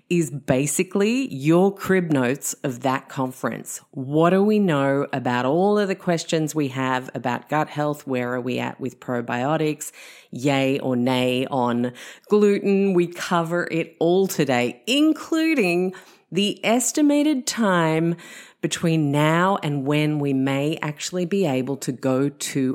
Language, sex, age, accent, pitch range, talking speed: English, female, 30-49, Australian, 130-175 Hz, 140 wpm